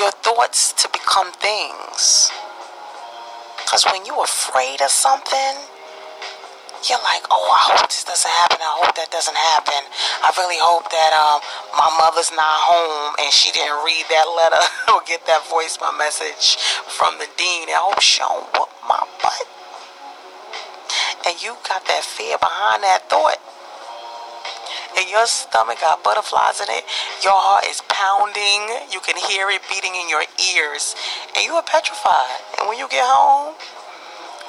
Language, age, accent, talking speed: English, 30-49, American, 155 wpm